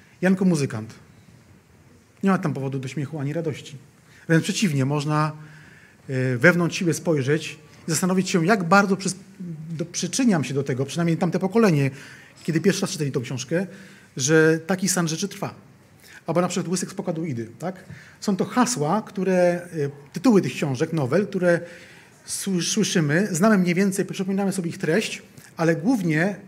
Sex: male